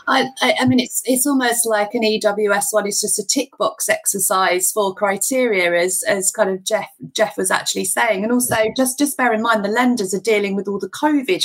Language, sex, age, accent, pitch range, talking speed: English, female, 30-49, British, 195-225 Hz, 215 wpm